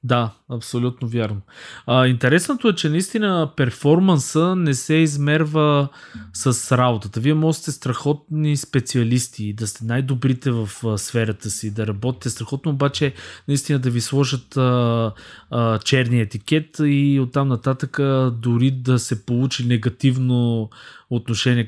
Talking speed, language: 120 wpm, Bulgarian